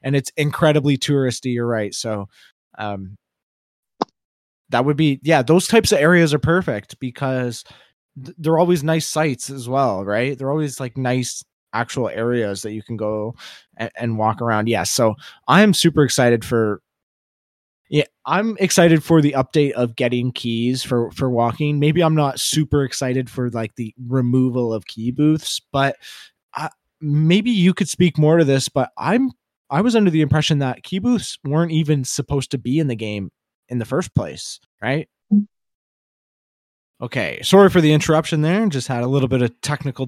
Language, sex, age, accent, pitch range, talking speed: English, male, 20-39, American, 115-155 Hz, 170 wpm